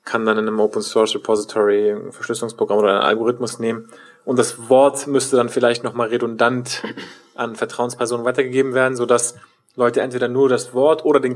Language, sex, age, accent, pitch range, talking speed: German, male, 20-39, German, 120-165 Hz, 165 wpm